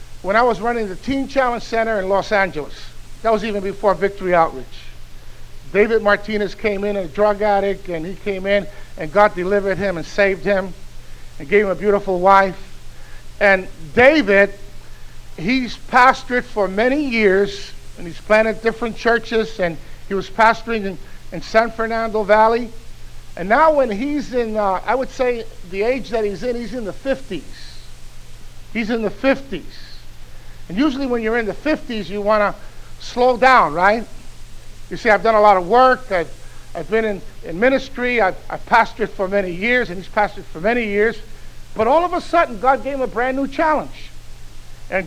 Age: 50-69